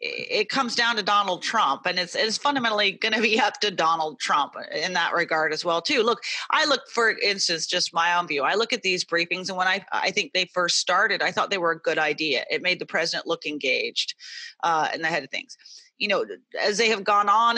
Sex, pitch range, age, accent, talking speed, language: female, 180-260 Hz, 30-49, American, 240 wpm, English